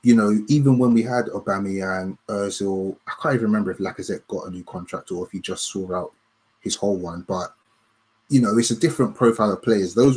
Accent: British